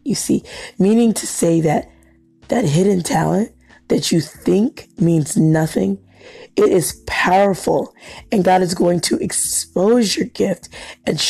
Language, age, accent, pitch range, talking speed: English, 20-39, American, 135-185 Hz, 140 wpm